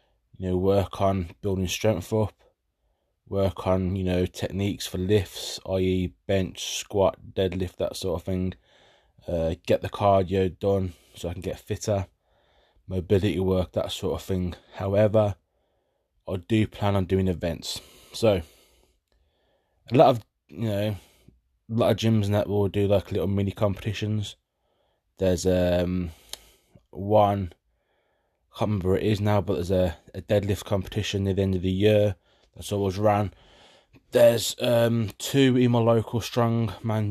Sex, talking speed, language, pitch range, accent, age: male, 150 wpm, English, 95-110 Hz, British, 20-39